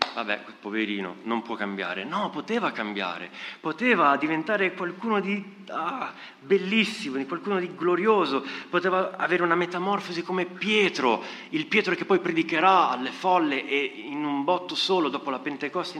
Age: 30-49